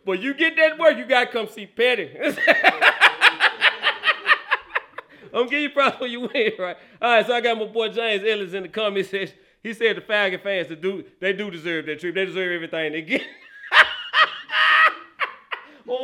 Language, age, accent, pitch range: English, 40-59, American, 185-265 Hz